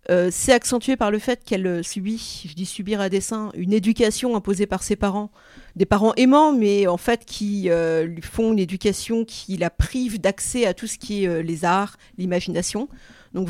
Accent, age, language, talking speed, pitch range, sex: French, 40-59, French, 200 wpm, 180-225 Hz, female